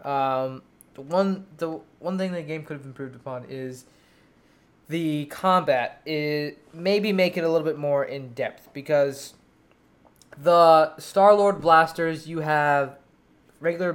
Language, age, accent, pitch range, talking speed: English, 20-39, American, 135-165 Hz, 140 wpm